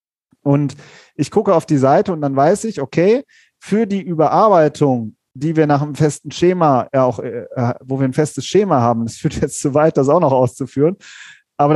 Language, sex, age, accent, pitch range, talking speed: German, male, 40-59, German, 135-175 Hz, 195 wpm